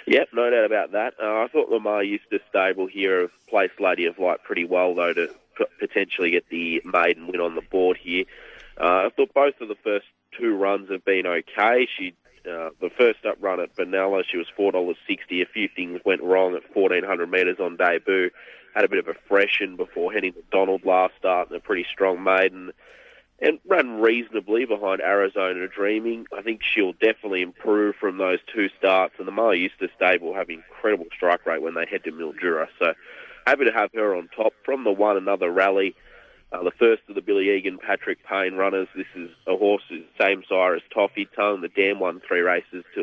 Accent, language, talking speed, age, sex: Australian, English, 210 wpm, 30-49, male